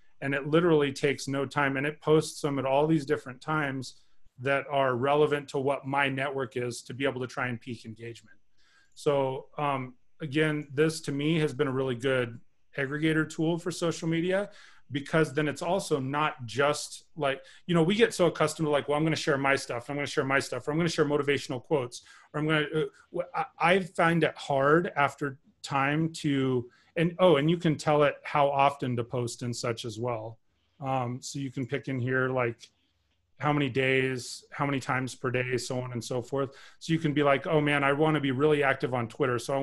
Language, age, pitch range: English, 30-49, 125-150 Hz